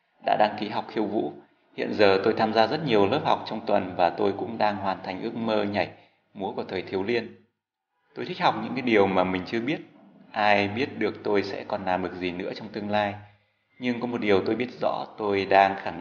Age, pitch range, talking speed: 20-39, 90-105 Hz, 240 wpm